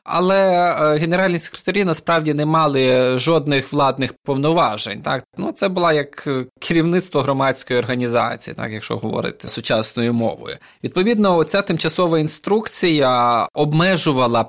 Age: 20-39